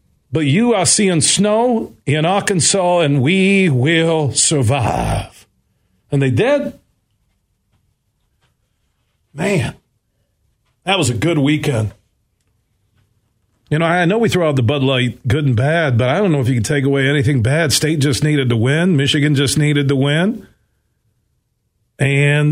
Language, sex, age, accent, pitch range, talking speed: English, male, 50-69, American, 115-150 Hz, 145 wpm